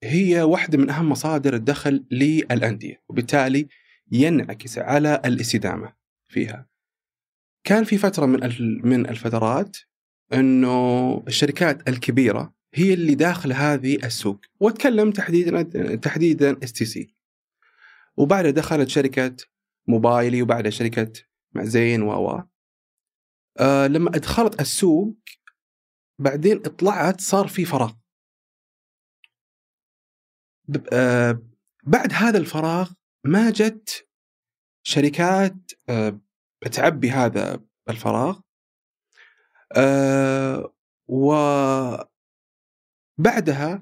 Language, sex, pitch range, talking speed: Arabic, male, 120-175 Hz, 80 wpm